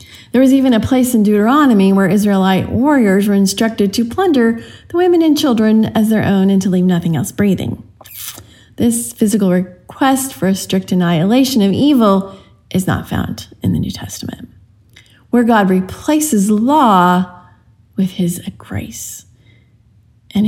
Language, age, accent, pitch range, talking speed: English, 30-49, American, 170-225 Hz, 150 wpm